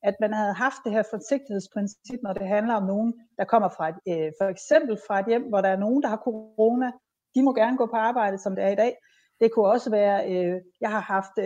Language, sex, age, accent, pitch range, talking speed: Danish, female, 30-49, native, 195-245 Hz, 230 wpm